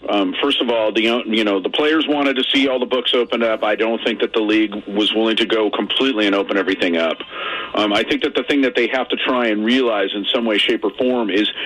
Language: English